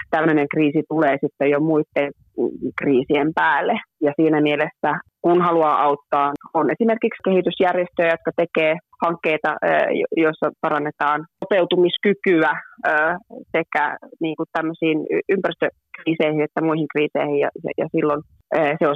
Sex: female